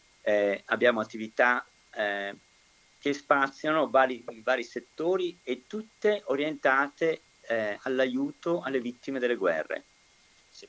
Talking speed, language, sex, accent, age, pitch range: 110 wpm, Italian, male, native, 50-69, 105-145 Hz